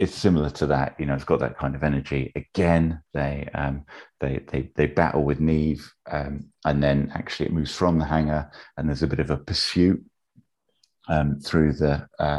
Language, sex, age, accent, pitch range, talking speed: English, male, 30-49, British, 70-80 Hz, 200 wpm